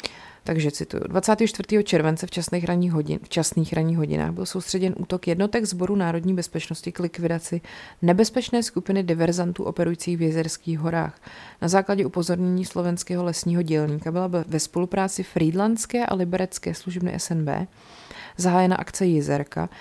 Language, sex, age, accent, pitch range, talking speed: Czech, female, 30-49, native, 165-185 Hz, 130 wpm